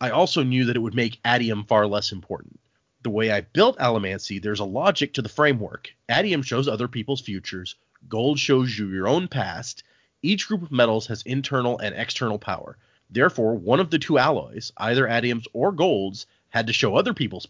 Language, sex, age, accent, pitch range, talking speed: English, male, 30-49, American, 105-130 Hz, 195 wpm